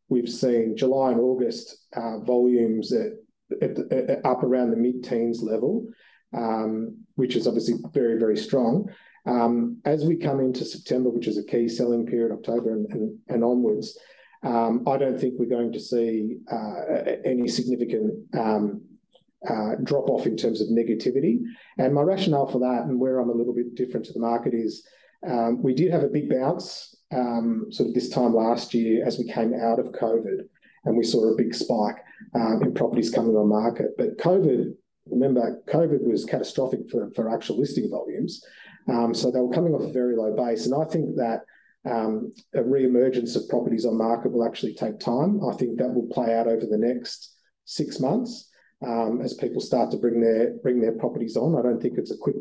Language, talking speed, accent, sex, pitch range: English, 195 wpm, Australian, male, 115-130 Hz